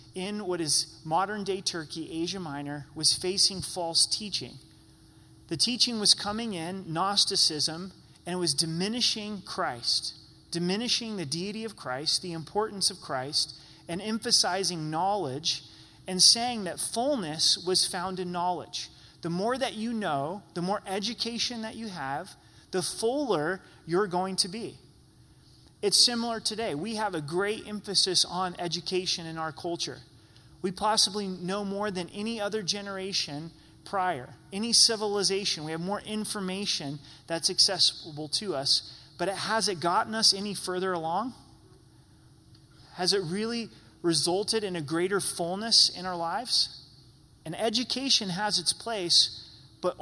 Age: 30-49